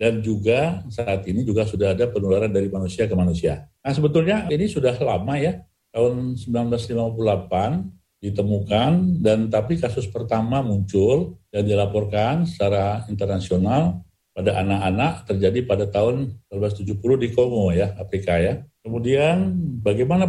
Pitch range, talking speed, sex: 95-120 Hz, 125 wpm, male